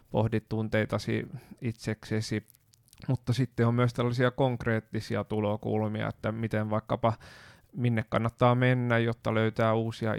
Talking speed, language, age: 110 wpm, Finnish, 30-49